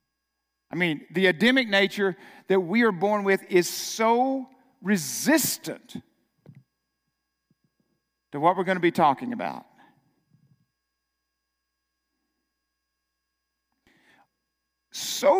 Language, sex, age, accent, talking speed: English, male, 50-69, American, 85 wpm